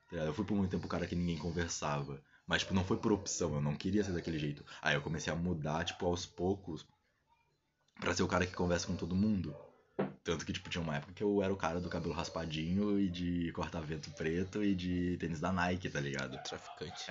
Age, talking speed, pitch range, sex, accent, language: 20-39, 230 wpm, 80-105 Hz, male, Brazilian, Portuguese